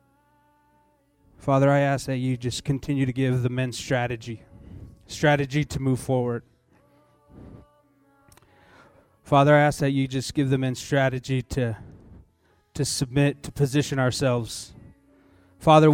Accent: American